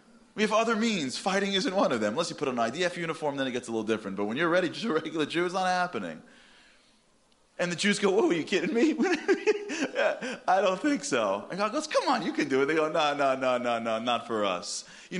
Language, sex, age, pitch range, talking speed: English, male, 30-49, 135-225 Hz, 260 wpm